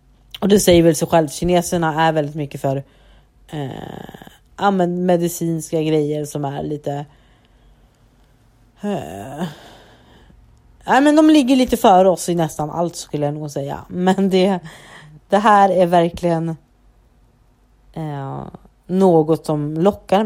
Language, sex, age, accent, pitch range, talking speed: Swedish, female, 30-49, native, 155-185 Hz, 125 wpm